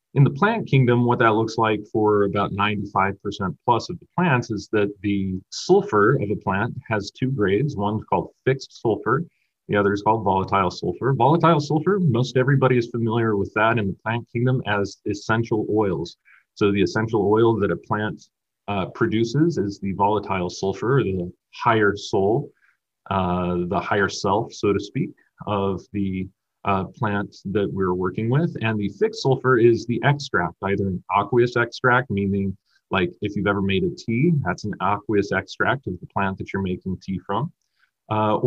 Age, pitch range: 40-59, 100-120 Hz